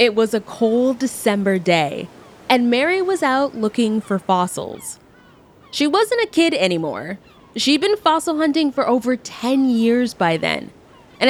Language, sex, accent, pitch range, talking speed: English, female, American, 200-270 Hz, 155 wpm